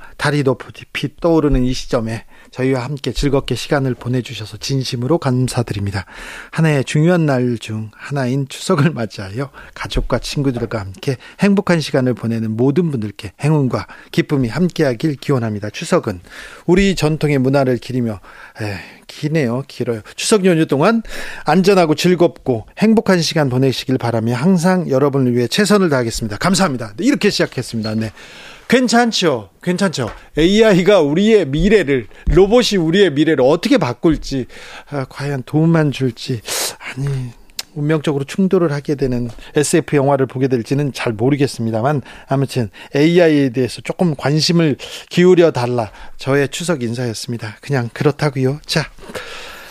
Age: 40-59